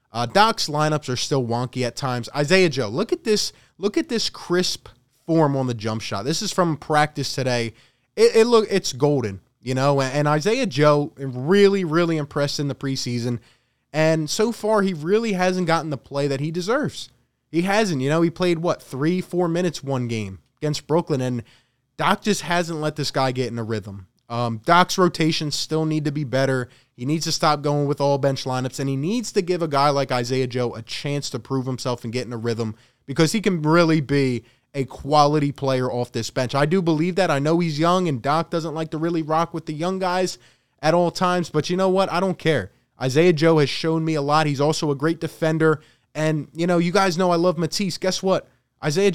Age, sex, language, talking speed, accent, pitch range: 20-39, male, English, 220 wpm, American, 130-175 Hz